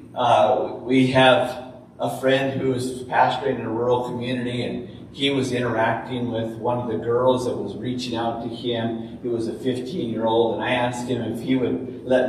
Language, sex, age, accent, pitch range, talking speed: English, male, 40-59, American, 120-135 Hz, 200 wpm